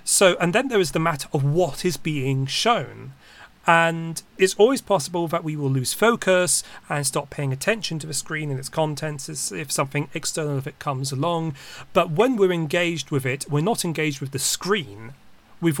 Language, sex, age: English, male, 30-49